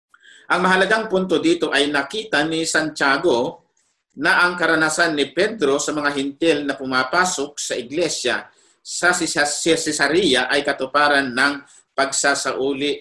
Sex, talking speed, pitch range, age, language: male, 120 wpm, 130-170 Hz, 50-69, Filipino